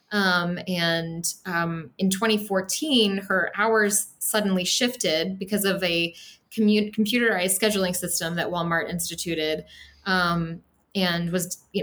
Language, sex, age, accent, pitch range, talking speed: English, female, 20-39, American, 175-210 Hz, 115 wpm